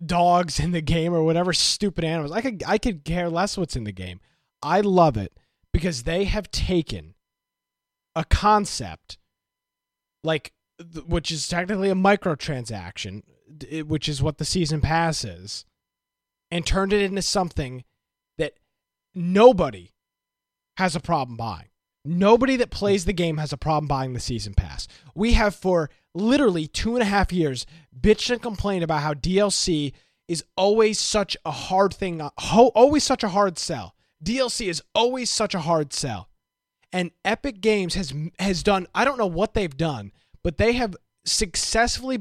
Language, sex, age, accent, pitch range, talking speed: English, male, 20-39, American, 145-205 Hz, 160 wpm